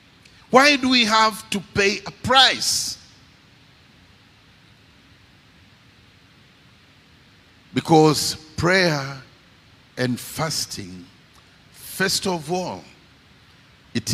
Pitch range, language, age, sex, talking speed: 110-145 Hz, English, 50-69, male, 70 wpm